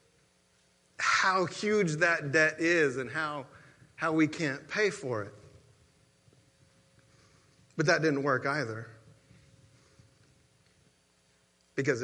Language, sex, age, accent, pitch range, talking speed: English, male, 40-59, American, 130-170 Hz, 95 wpm